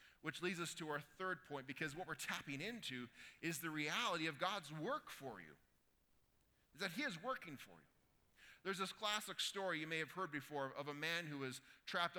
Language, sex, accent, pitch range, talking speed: English, male, American, 165-225 Hz, 205 wpm